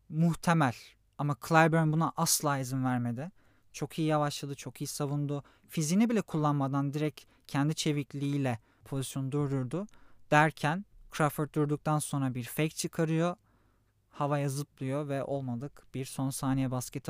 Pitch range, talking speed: 135-175 Hz, 125 wpm